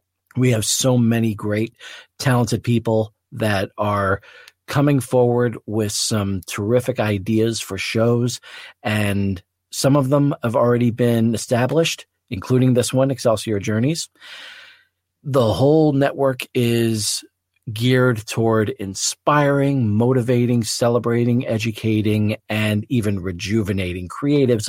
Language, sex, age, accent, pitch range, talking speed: English, male, 40-59, American, 100-125 Hz, 105 wpm